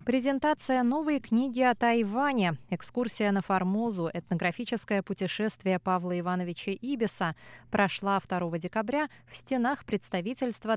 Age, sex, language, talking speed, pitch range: 20-39, female, Russian, 105 wpm, 175-235 Hz